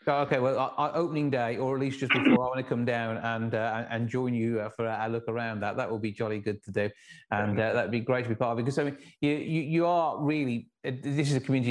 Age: 30-49